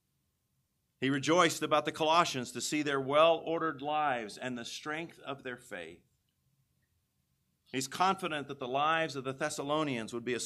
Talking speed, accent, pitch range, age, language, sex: 155 wpm, American, 125-170 Hz, 50-69, English, male